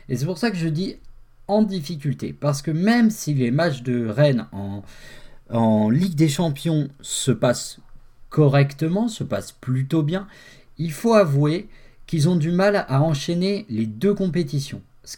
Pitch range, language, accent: 125-175 Hz, French, French